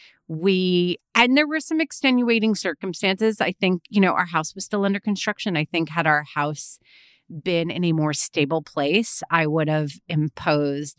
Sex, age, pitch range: female, 30-49, 155-215 Hz